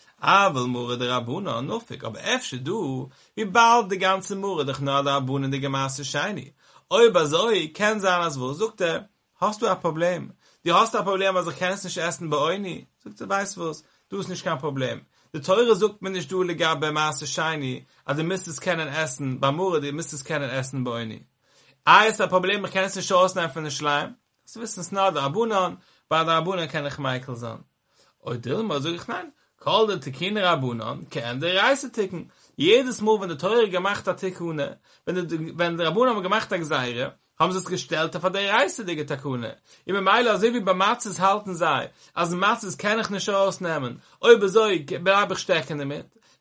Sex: male